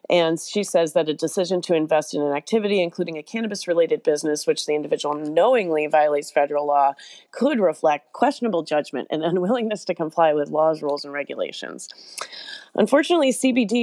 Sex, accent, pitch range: female, American, 155-185 Hz